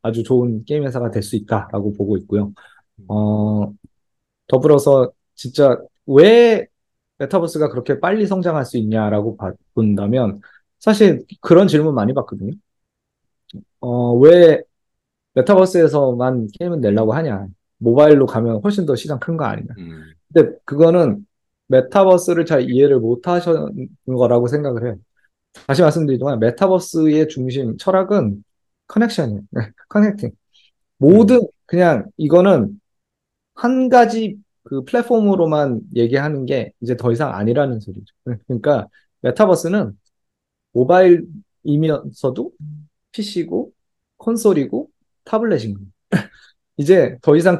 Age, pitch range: 20-39, 115-180 Hz